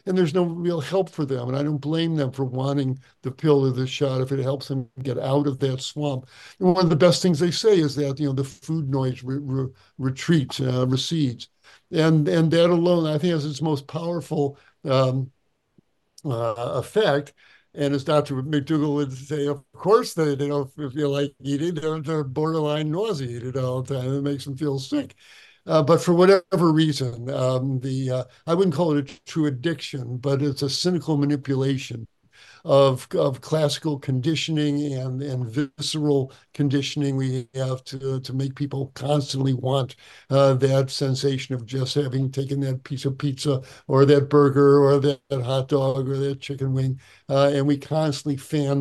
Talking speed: 185 wpm